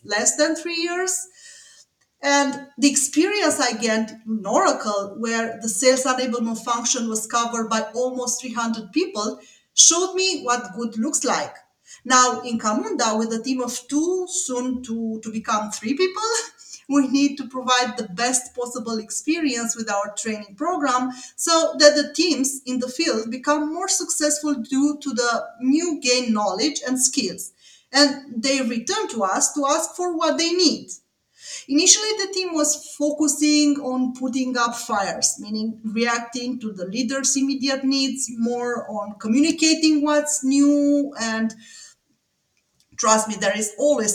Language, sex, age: English, female, 30-49